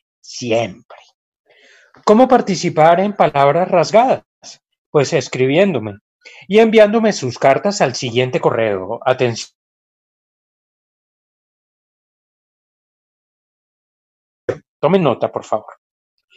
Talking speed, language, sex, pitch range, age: 75 wpm, Spanish, male, 130-205 Hz, 30-49